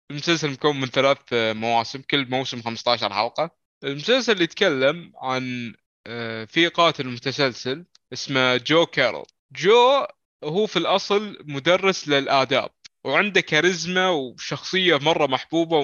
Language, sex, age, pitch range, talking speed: Arabic, male, 20-39, 135-180 Hz, 115 wpm